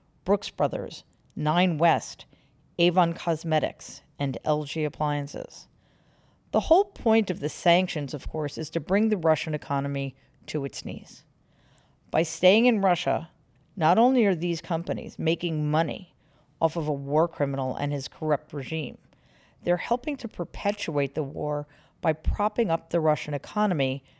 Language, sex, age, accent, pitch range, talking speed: English, female, 40-59, American, 145-185 Hz, 145 wpm